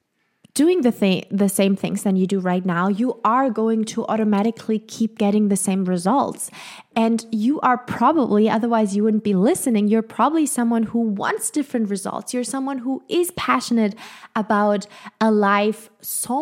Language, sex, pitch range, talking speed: English, female, 200-245 Hz, 170 wpm